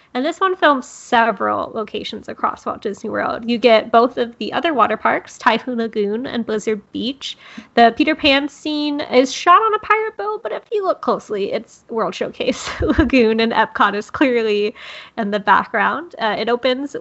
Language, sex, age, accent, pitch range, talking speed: English, female, 20-39, American, 215-275 Hz, 185 wpm